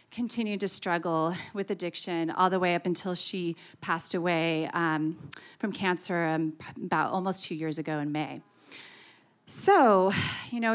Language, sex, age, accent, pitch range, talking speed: English, female, 30-49, American, 180-230 Hz, 150 wpm